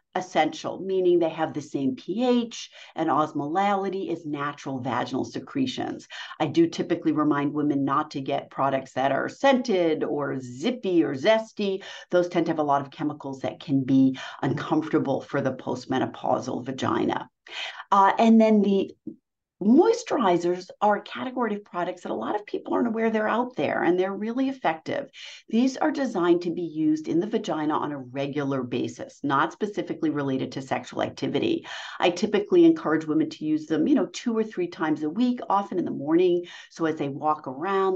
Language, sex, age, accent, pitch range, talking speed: English, female, 50-69, American, 155-245 Hz, 175 wpm